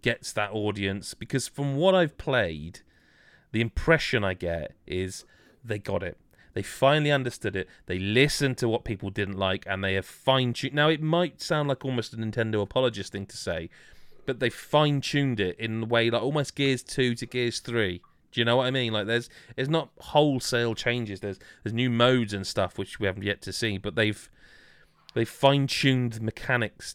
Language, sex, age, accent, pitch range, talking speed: English, male, 30-49, British, 100-130 Hz, 200 wpm